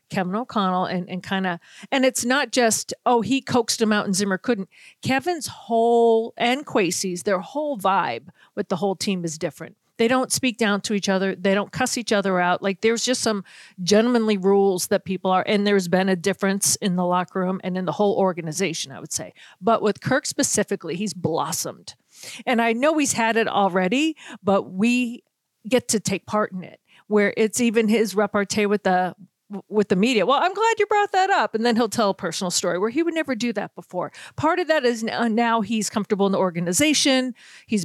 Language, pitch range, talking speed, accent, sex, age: English, 185-235 Hz, 210 wpm, American, female, 40-59